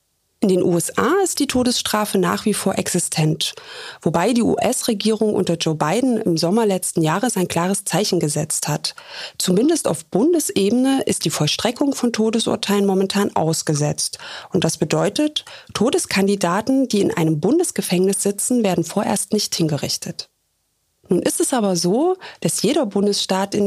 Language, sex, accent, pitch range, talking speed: German, female, German, 175-245 Hz, 145 wpm